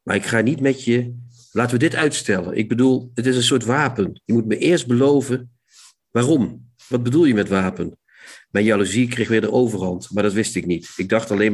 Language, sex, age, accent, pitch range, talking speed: Dutch, male, 50-69, Dutch, 105-130 Hz, 220 wpm